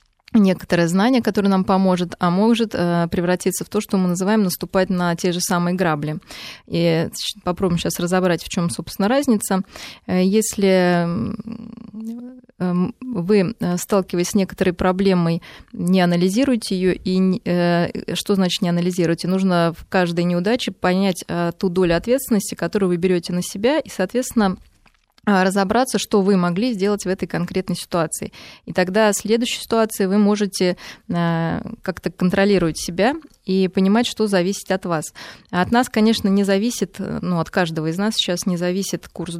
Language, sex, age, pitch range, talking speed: Russian, female, 20-39, 175-215 Hz, 150 wpm